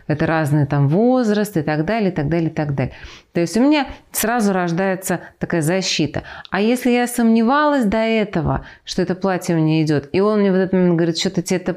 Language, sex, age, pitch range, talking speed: Russian, female, 30-49, 160-190 Hz, 210 wpm